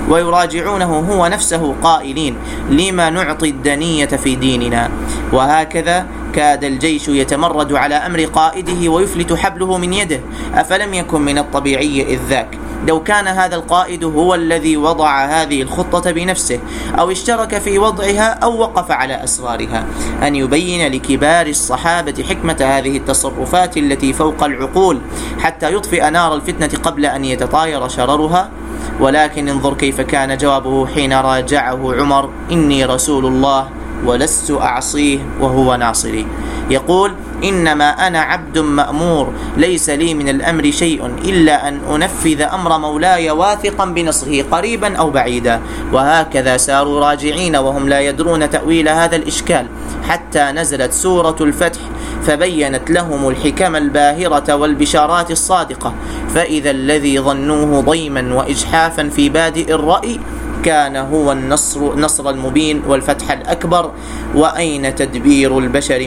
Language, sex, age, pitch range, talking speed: Arabic, male, 30-49, 140-170 Hz, 120 wpm